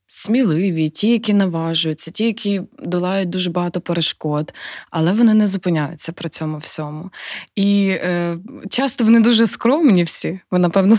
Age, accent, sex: 20-39, native, female